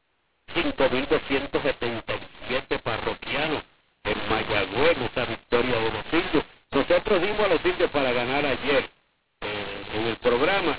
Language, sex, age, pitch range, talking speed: English, male, 50-69, 130-155 Hz, 115 wpm